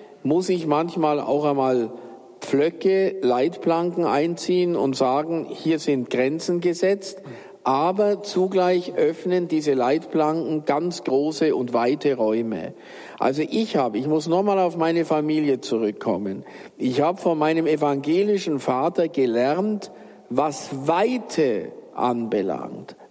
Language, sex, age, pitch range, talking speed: German, male, 50-69, 145-185 Hz, 115 wpm